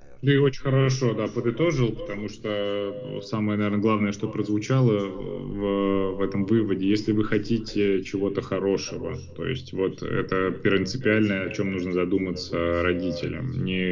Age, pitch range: 20-39, 90-110 Hz